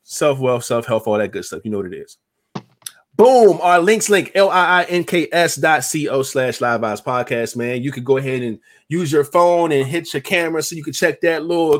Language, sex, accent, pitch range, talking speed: English, male, American, 120-165 Hz, 205 wpm